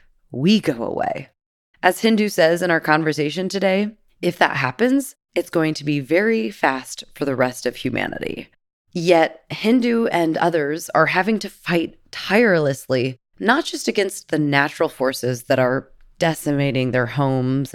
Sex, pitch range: female, 135-185 Hz